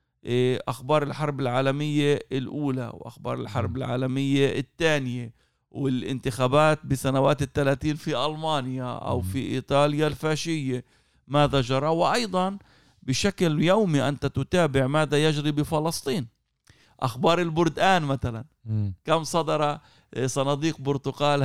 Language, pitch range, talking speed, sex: Arabic, 125-150 Hz, 95 wpm, male